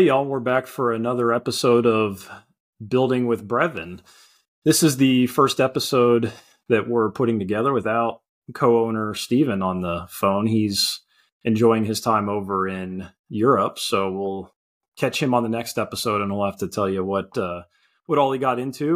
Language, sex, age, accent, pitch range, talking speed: English, male, 30-49, American, 110-135 Hz, 170 wpm